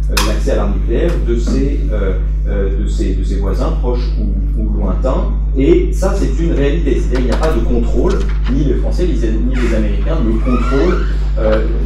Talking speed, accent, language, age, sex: 180 wpm, French, French, 30-49, male